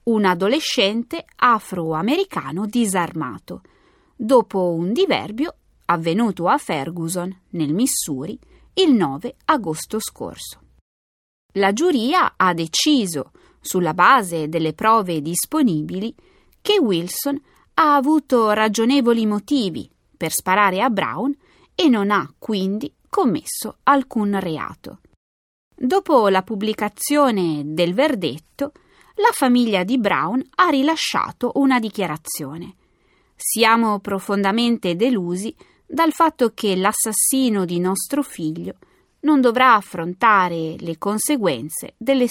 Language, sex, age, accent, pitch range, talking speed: Italian, female, 30-49, native, 175-265 Hz, 100 wpm